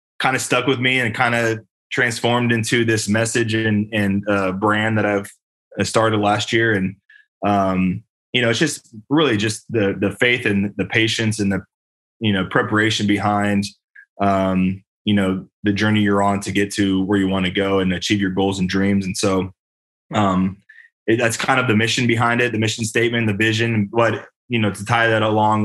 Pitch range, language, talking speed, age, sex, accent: 100-115 Hz, English, 200 wpm, 20-39, male, American